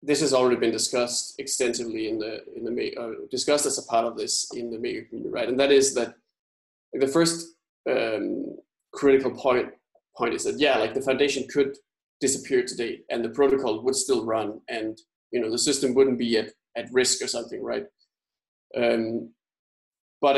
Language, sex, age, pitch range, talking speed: English, male, 20-39, 120-145 Hz, 185 wpm